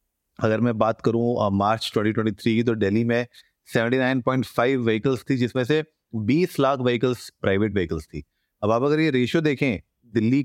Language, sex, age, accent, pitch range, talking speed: Hindi, male, 30-49, native, 105-125 Hz, 165 wpm